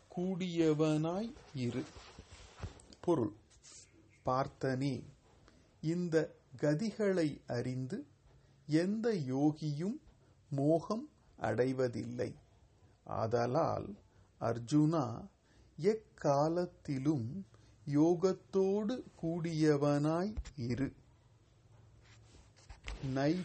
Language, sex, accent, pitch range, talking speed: Tamil, male, native, 115-165 Hz, 45 wpm